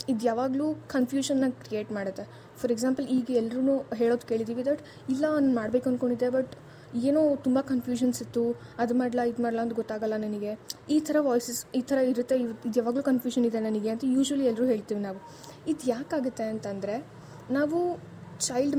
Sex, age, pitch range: female, 10-29, 225-275 Hz